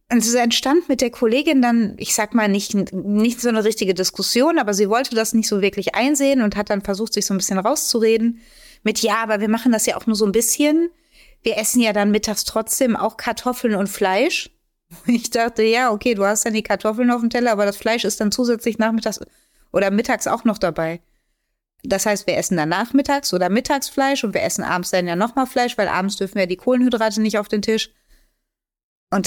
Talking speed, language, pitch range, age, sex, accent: 220 wpm, German, 195-240 Hz, 30-49, female, German